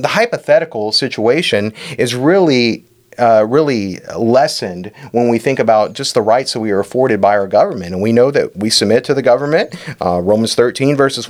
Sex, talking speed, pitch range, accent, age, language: male, 185 wpm, 105-130 Hz, American, 30-49, English